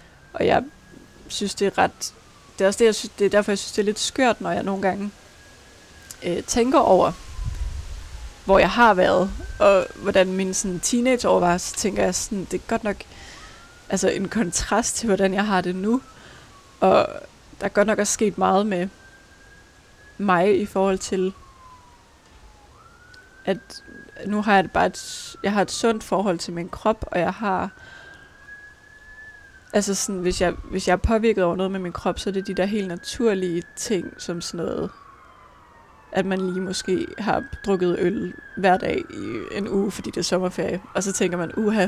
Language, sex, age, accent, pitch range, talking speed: Danish, female, 20-39, native, 190-225 Hz, 185 wpm